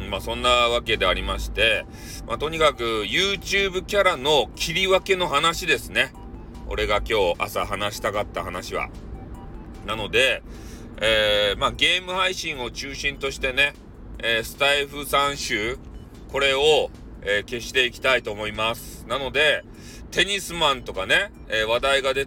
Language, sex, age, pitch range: Japanese, male, 40-59, 110-155 Hz